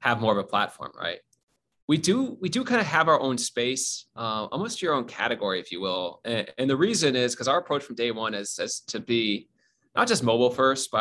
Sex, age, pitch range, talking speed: male, 30-49, 110-135 Hz, 240 wpm